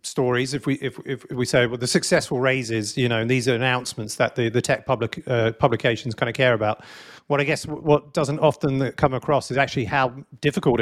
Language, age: English, 40-59